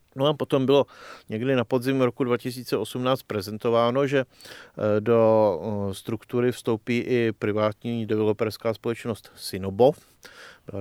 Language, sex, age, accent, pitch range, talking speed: Czech, male, 40-59, native, 110-125 Hz, 110 wpm